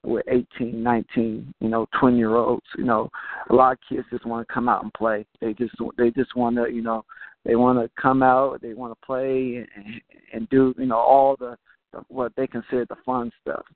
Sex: male